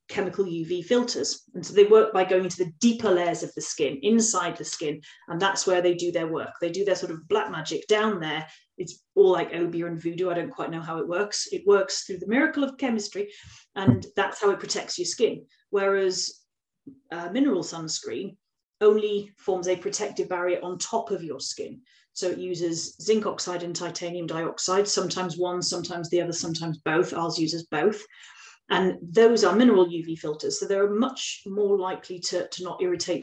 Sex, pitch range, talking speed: female, 175-215 Hz, 195 wpm